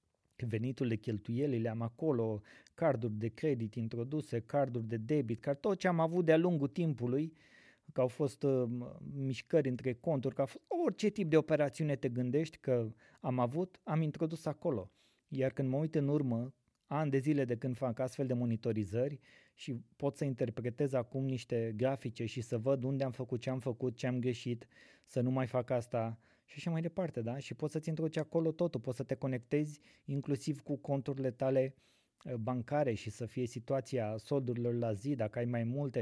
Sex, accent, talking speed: male, native, 185 wpm